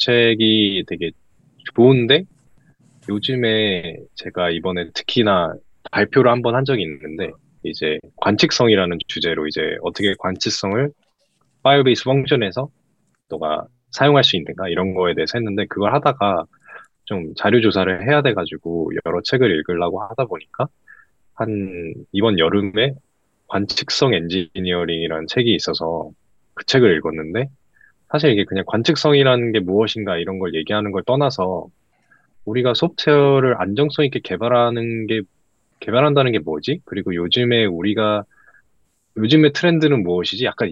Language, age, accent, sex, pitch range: Korean, 20-39, native, male, 95-130 Hz